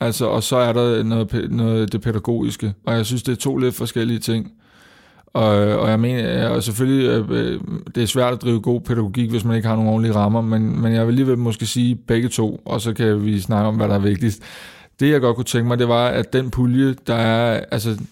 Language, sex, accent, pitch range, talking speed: Danish, male, native, 110-125 Hz, 240 wpm